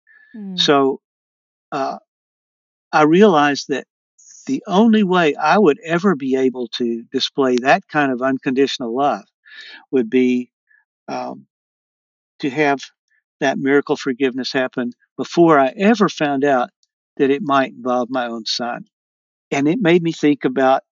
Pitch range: 130-200 Hz